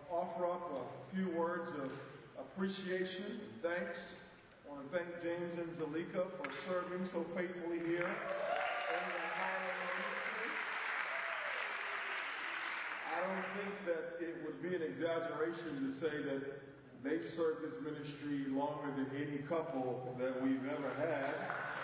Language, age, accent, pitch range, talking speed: English, 40-59, American, 145-175 Hz, 125 wpm